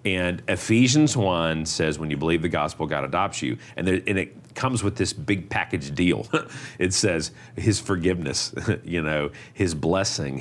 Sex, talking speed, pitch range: male, 175 wpm, 85-120 Hz